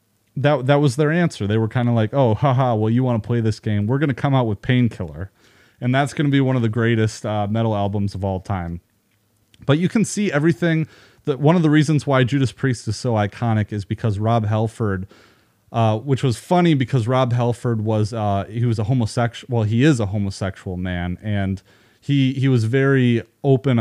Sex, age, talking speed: male, 30-49, 220 wpm